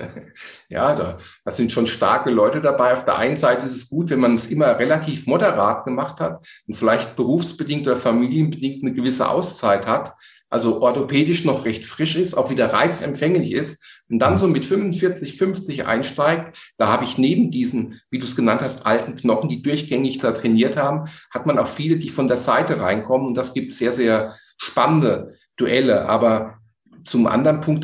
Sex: male